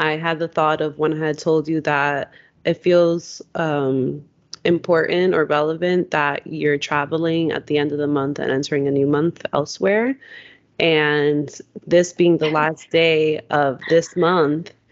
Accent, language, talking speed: American, English, 165 wpm